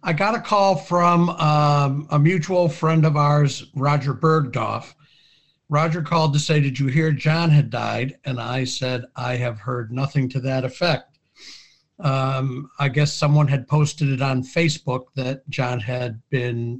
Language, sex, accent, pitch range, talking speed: English, male, American, 130-150 Hz, 165 wpm